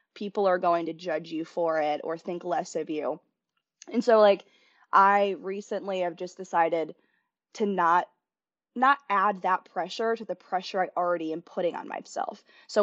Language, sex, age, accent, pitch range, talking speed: English, female, 20-39, American, 175-215 Hz, 175 wpm